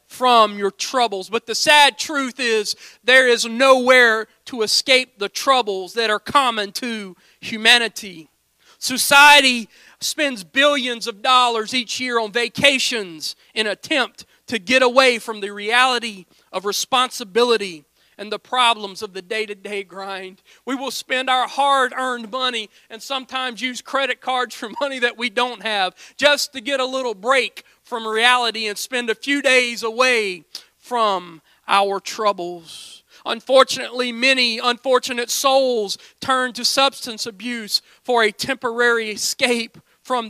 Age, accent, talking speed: 40-59, American, 140 wpm